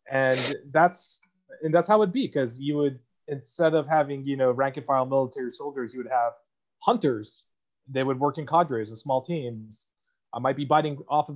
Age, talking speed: 30-49, 190 wpm